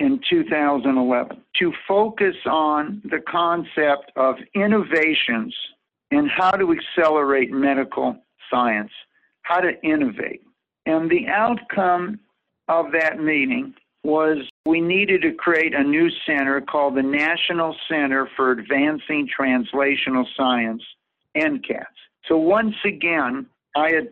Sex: male